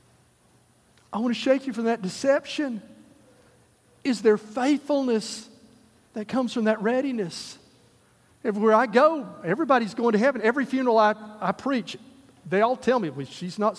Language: English